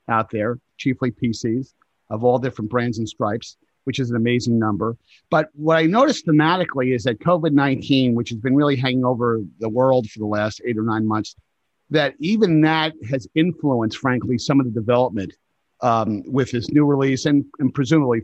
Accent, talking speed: American, 190 wpm